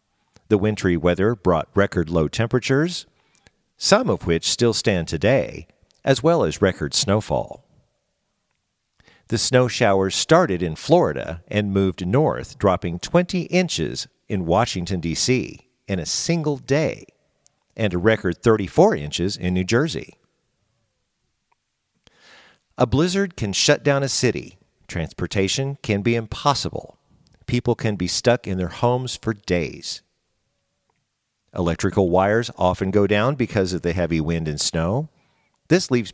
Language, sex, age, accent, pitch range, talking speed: English, male, 50-69, American, 90-120 Hz, 130 wpm